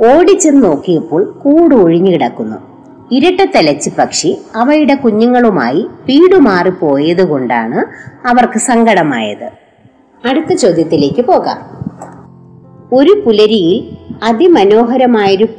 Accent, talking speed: native, 55 wpm